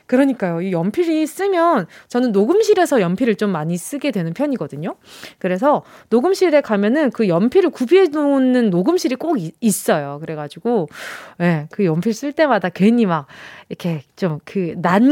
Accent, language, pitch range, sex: native, Korean, 200-310 Hz, female